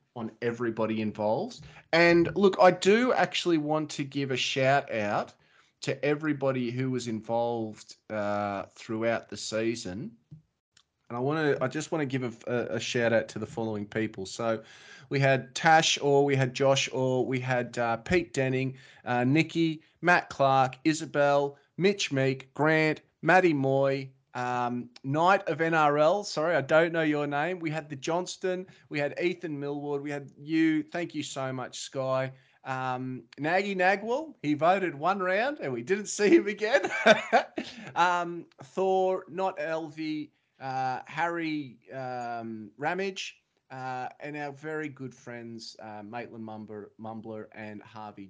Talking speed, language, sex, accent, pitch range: 155 wpm, English, male, Australian, 120-160 Hz